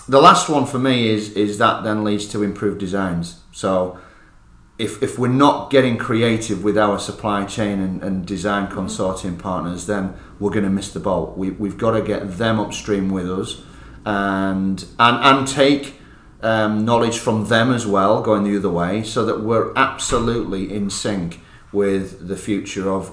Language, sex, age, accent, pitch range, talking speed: English, male, 30-49, British, 95-110 Hz, 175 wpm